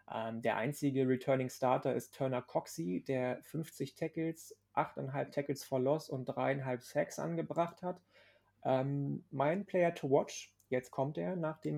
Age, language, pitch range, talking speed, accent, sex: 30-49, German, 125-155 Hz, 145 wpm, German, male